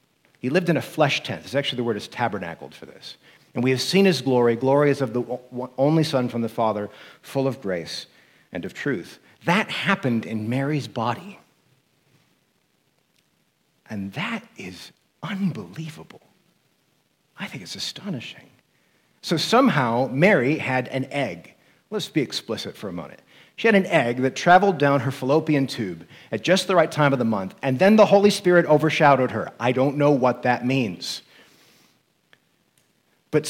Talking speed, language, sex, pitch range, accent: 165 wpm, English, male, 125-180 Hz, American